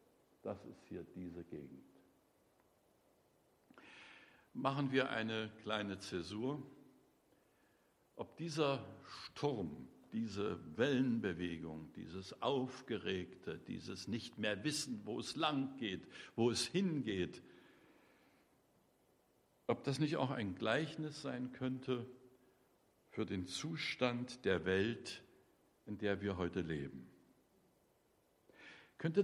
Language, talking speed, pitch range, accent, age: German, 85 wpm, 105-145 Hz, German, 60-79